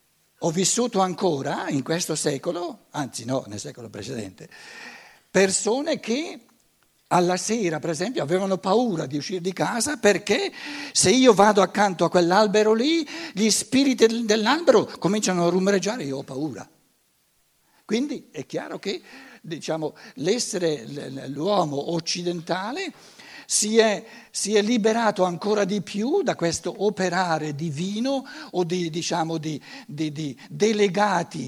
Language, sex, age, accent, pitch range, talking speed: Italian, male, 60-79, native, 150-210 Hz, 125 wpm